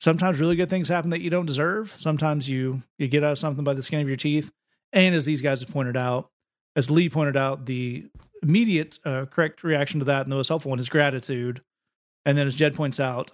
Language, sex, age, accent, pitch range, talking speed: English, male, 40-59, American, 130-165 Hz, 240 wpm